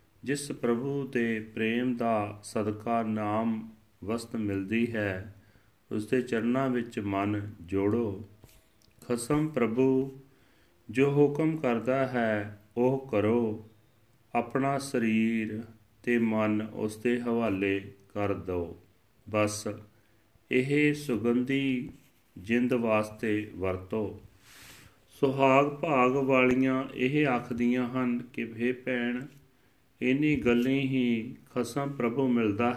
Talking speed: 90 wpm